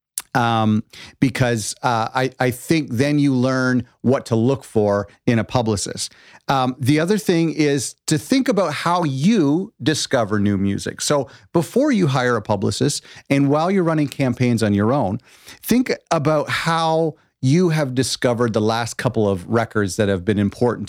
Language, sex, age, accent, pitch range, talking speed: English, male, 40-59, American, 115-150 Hz, 165 wpm